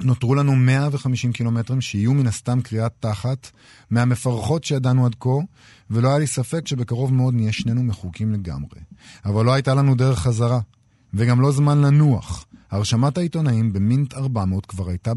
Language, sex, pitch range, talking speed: Hebrew, male, 105-130 Hz, 155 wpm